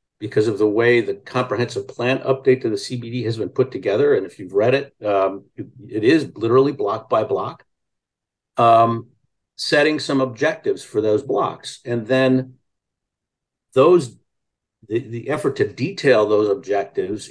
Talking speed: 155 wpm